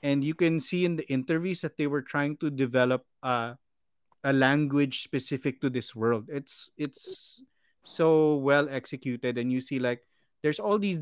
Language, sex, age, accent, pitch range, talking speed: English, male, 30-49, Filipino, 125-155 Hz, 175 wpm